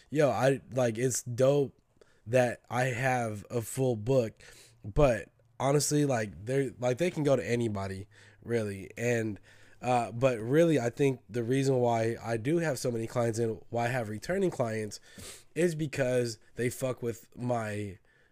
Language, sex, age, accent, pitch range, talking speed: English, male, 20-39, American, 115-140 Hz, 160 wpm